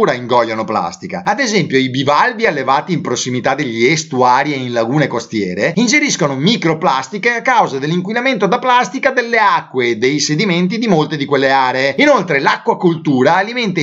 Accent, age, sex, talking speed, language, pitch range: native, 30-49, male, 150 wpm, Italian, 145-215 Hz